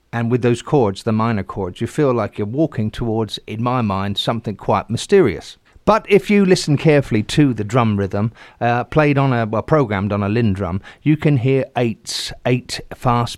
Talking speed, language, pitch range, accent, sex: 195 wpm, English, 105-130 Hz, British, male